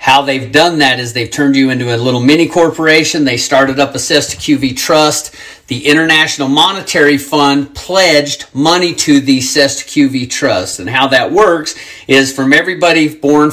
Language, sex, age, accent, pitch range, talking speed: English, male, 40-59, American, 135-155 Hz, 160 wpm